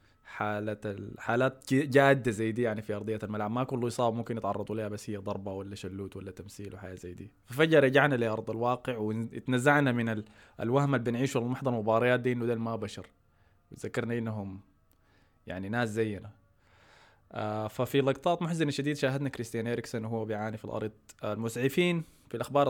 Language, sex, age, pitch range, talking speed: Arabic, male, 20-39, 105-130 Hz, 160 wpm